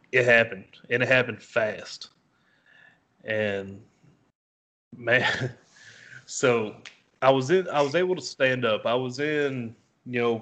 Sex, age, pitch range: male, 20-39, 110-130 Hz